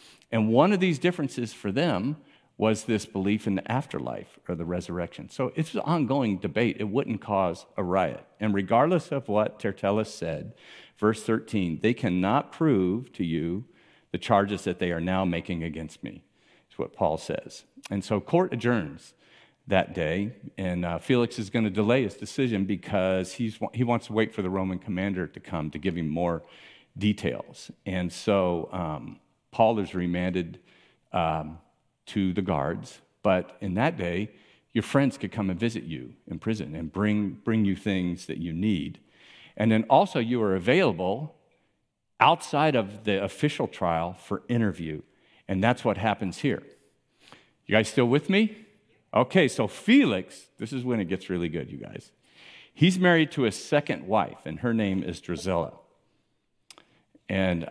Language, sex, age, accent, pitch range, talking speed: English, male, 50-69, American, 90-120 Hz, 165 wpm